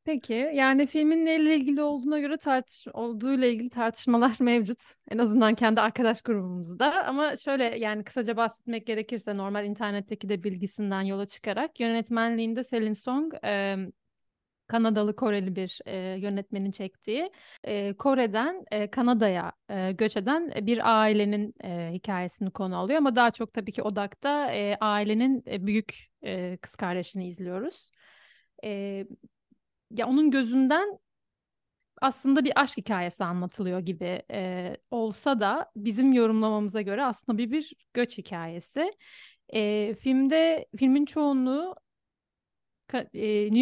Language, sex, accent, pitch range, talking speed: Turkish, female, native, 200-265 Hz, 115 wpm